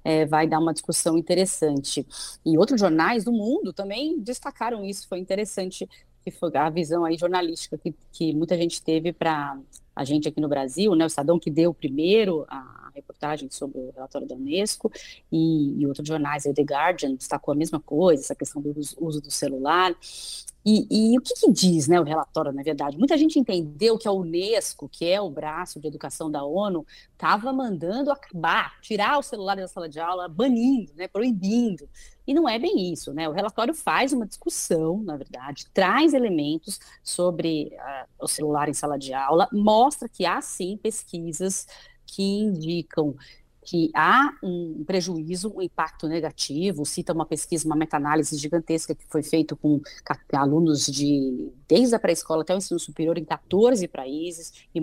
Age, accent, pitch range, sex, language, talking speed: 30-49, Brazilian, 155-195 Hz, female, Portuguese, 175 wpm